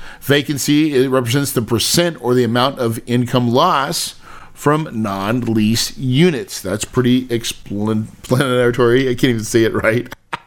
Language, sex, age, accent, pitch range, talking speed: English, male, 40-59, American, 115-145 Hz, 130 wpm